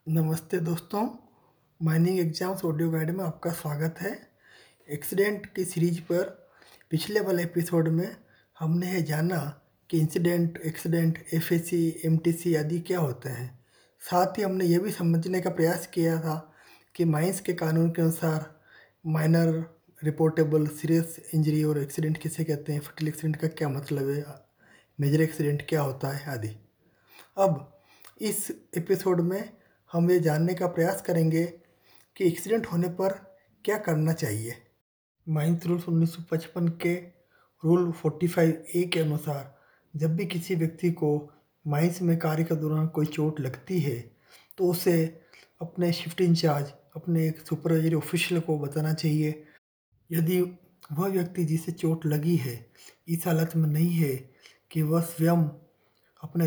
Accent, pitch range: native, 155-175 Hz